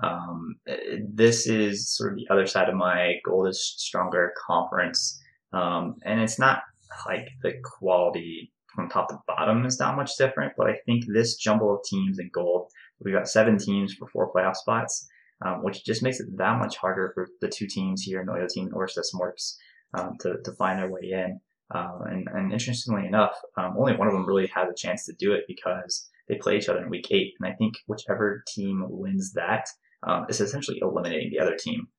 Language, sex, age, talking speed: English, male, 20-39, 205 wpm